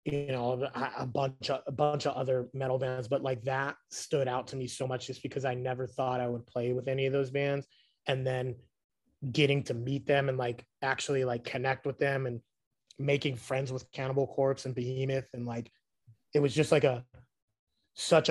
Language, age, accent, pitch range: English, 30-49, American, 125-145 Hz